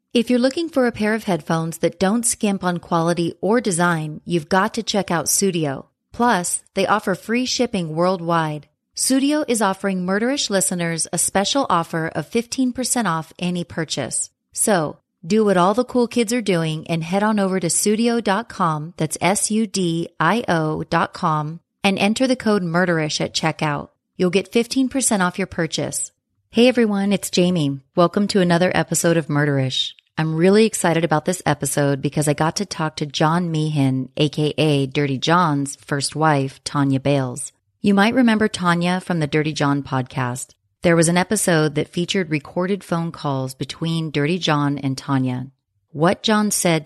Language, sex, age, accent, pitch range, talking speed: English, female, 30-49, American, 145-195 Hz, 165 wpm